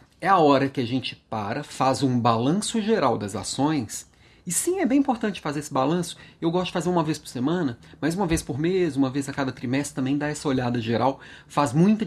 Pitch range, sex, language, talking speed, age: 125-175 Hz, male, Portuguese, 230 wpm, 40-59